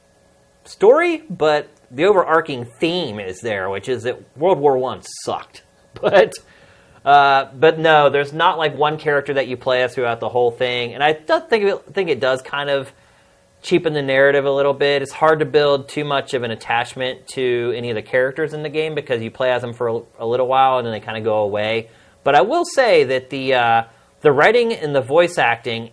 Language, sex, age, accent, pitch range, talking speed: English, male, 30-49, American, 125-160 Hz, 220 wpm